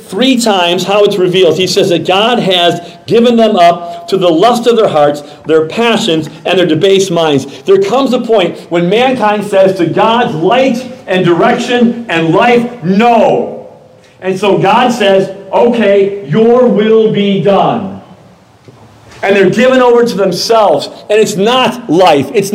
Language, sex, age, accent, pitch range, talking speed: English, male, 50-69, American, 170-235 Hz, 160 wpm